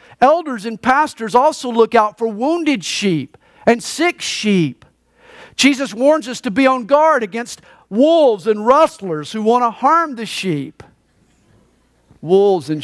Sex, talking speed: male, 145 wpm